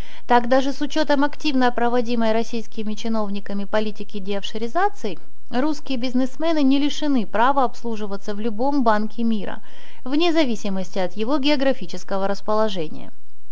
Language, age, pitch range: Russian, 30-49, 215-270 Hz